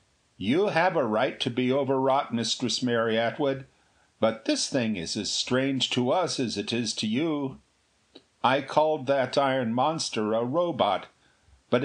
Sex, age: male, 50-69